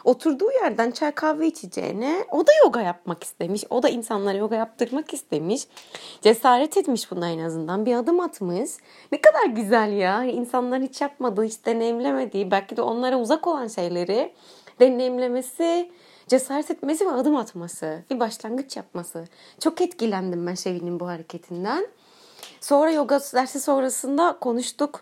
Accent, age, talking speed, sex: native, 30-49, 140 wpm, female